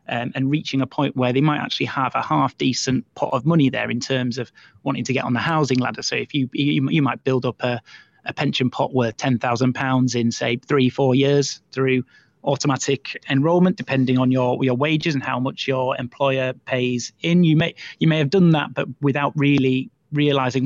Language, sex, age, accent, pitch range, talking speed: English, male, 30-49, British, 125-145 Hz, 215 wpm